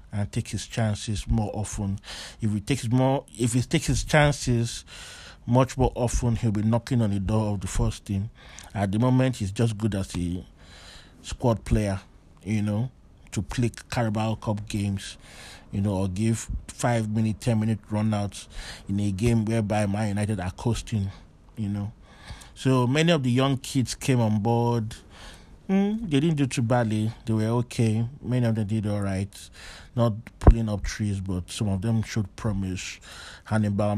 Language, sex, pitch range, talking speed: English, male, 100-120 Hz, 175 wpm